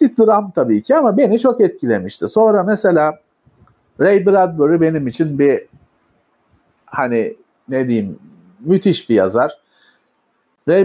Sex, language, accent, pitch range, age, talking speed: male, Turkish, native, 150-225 Hz, 50-69, 115 wpm